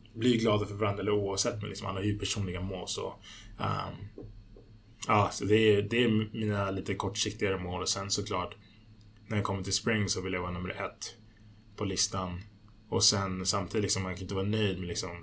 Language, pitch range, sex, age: Swedish, 95-105 Hz, male, 20-39